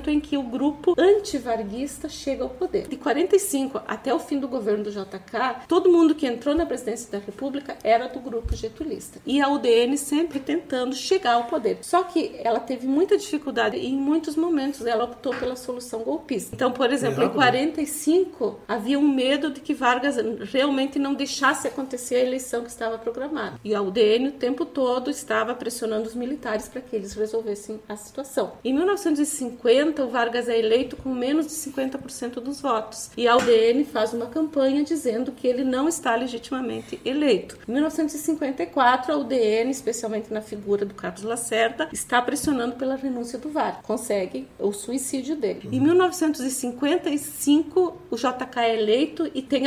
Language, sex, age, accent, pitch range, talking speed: Portuguese, female, 40-59, Brazilian, 235-290 Hz, 170 wpm